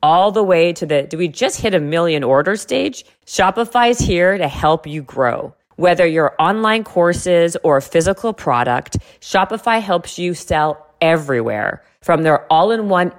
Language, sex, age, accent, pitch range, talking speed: English, female, 40-59, American, 145-190 Hz, 165 wpm